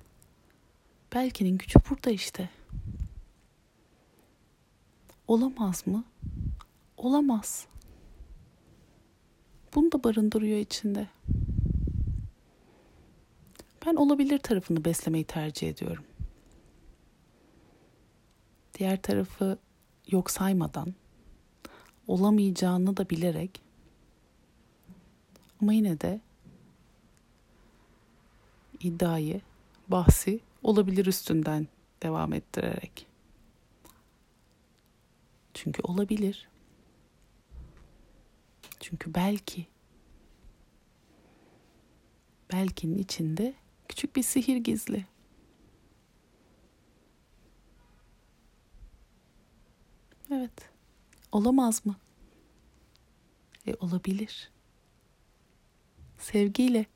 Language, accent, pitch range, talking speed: Turkish, native, 165-220 Hz, 50 wpm